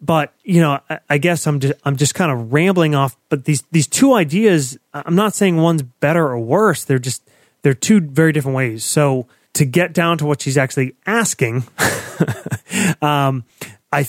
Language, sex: English, male